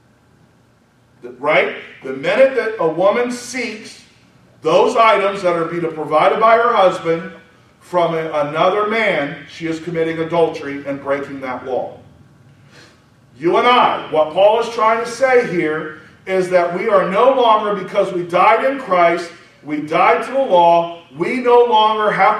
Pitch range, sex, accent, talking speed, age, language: 170-240 Hz, male, American, 150 wpm, 40-59, English